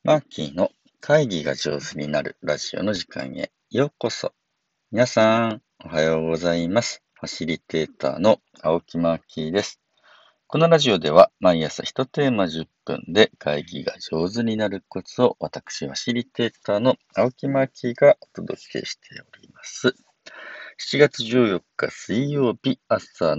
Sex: male